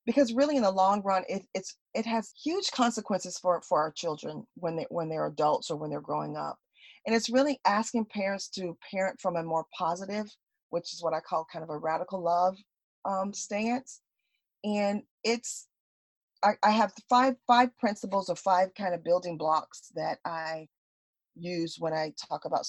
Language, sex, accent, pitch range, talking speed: English, female, American, 165-210 Hz, 185 wpm